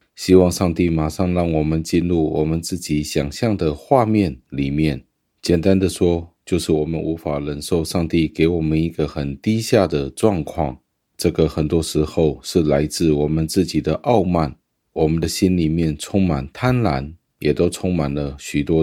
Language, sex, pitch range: Chinese, male, 75-90 Hz